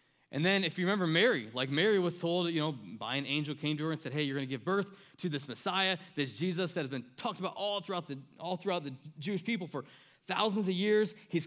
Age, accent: 20-39, American